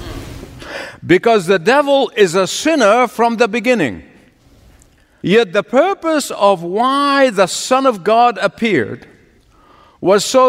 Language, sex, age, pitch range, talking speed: English, male, 50-69, 185-245 Hz, 120 wpm